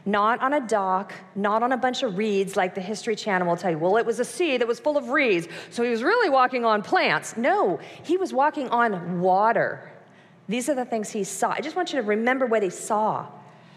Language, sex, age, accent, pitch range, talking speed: English, female, 40-59, American, 180-245 Hz, 240 wpm